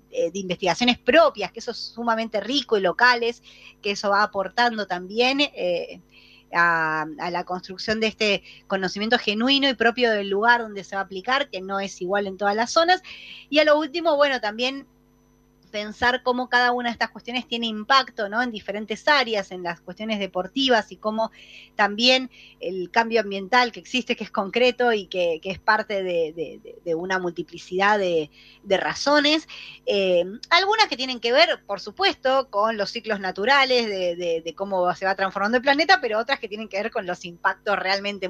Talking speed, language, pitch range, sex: 185 wpm, Spanish, 190-245 Hz, female